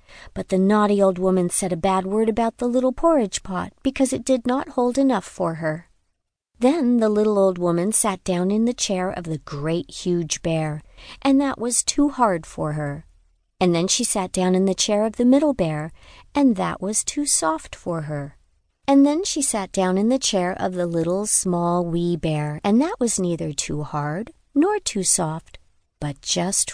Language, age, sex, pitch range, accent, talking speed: English, 50-69, female, 175-255 Hz, American, 200 wpm